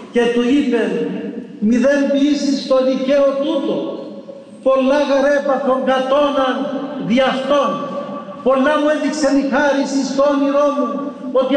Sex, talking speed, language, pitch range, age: male, 115 wpm, Greek, 240-270 Hz, 50-69